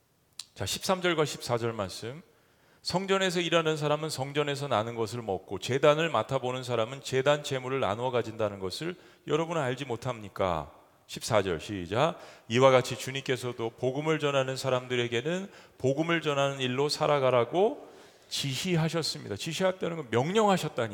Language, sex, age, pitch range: Korean, male, 40-59, 100-145 Hz